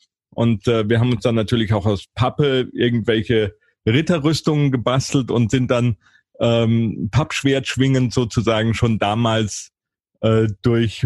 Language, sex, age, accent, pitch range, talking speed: German, male, 40-59, German, 110-135 Hz, 130 wpm